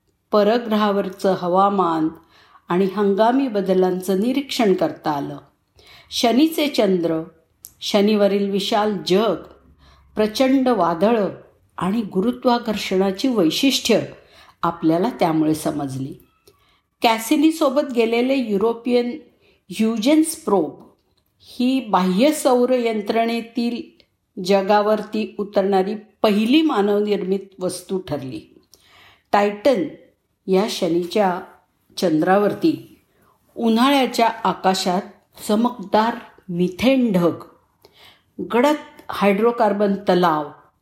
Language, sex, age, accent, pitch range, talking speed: Marathi, female, 50-69, native, 180-235 Hz, 70 wpm